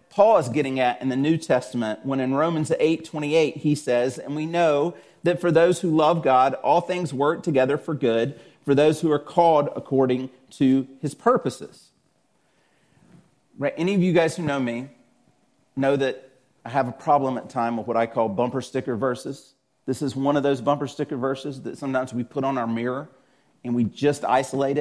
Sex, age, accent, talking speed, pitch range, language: male, 40-59, American, 195 wpm, 125-160 Hz, English